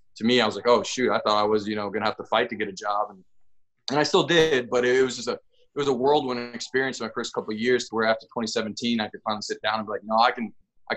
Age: 20-39